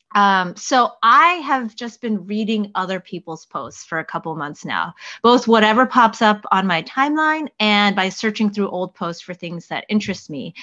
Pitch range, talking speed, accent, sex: 185-225 Hz, 190 wpm, American, female